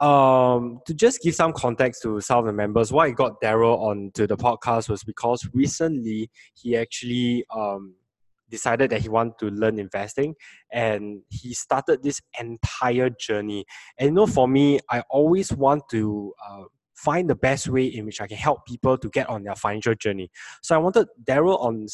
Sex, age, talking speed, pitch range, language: male, 10-29, 185 wpm, 115-145 Hz, English